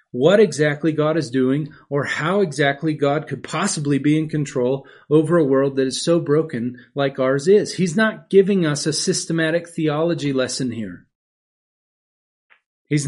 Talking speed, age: 155 wpm, 40-59